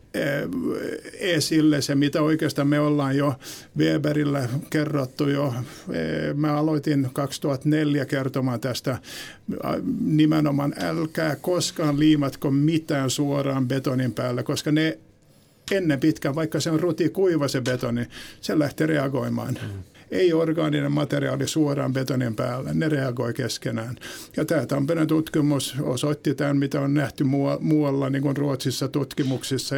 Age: 50-69